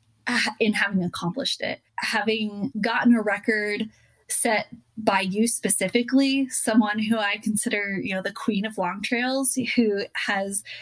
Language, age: English, 20-39